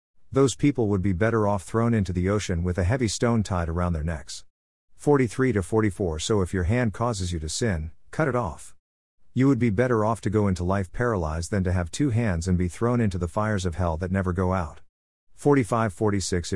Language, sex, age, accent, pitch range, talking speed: English, male, 50-69, American, 90-115 Hz, 210 wpm